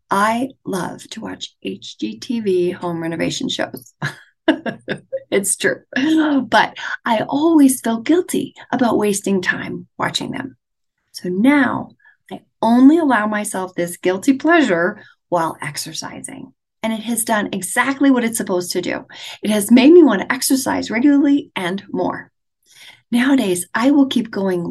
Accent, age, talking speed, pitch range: American, 40-59, 135 wpm, 195-275 Hz